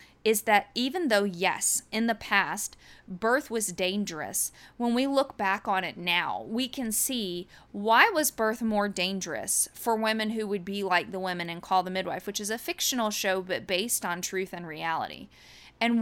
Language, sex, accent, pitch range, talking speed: English, female, American, 185-235 Hz, 185 wpm